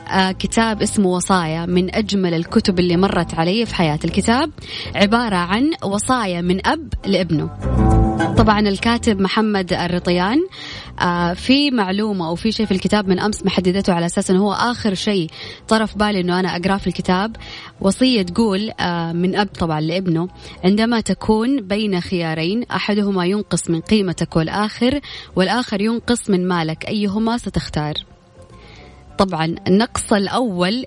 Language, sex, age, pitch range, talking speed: Arabic, female, 20-39, 175-220 Hz, 135 wpm